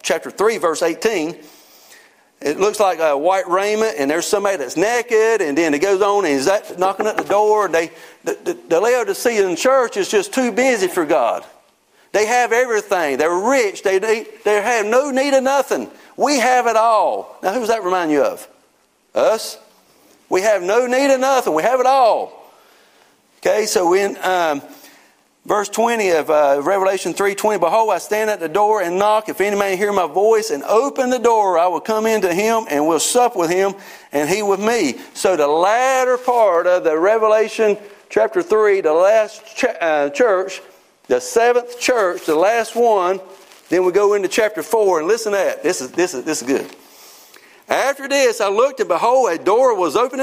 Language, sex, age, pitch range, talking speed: English, male, 40-59, 190-255 Hz, 195 wpm